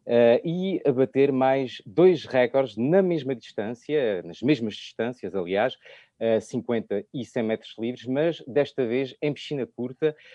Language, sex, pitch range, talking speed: Portuguese, male, 120-150 Hz, 140 wpm